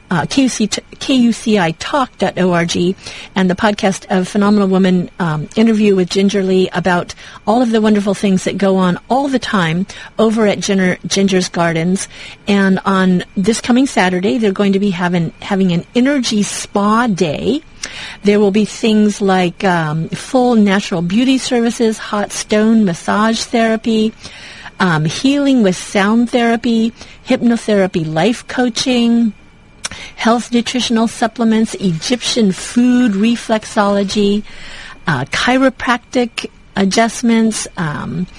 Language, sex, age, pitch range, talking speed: English, female, 40-59, 190-230 Hz, 120 wpm